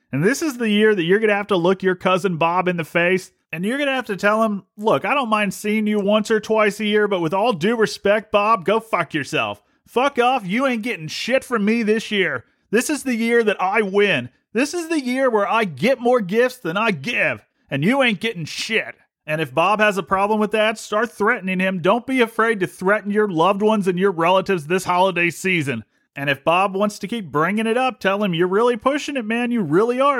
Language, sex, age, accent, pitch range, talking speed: English, male, 30-49, American, 165-220 Hz, 240 wpm